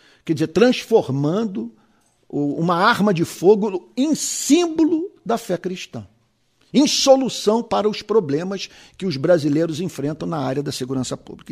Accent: Brazilian